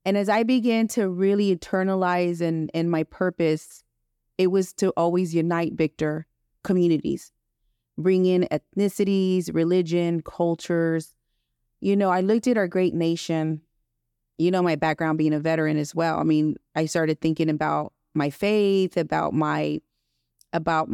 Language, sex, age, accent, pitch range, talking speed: English, female, 30-49, American, 155-195 Hz, 145 wpm